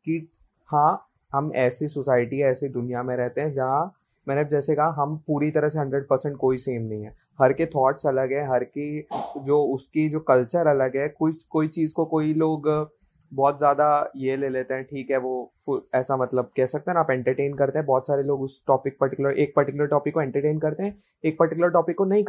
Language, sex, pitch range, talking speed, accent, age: Hindi, male, 135-160 Hz, 215 wpm, native, 20-39